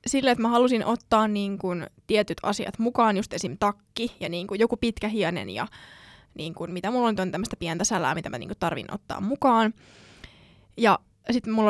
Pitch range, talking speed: 195-240 Hz, 195 wpm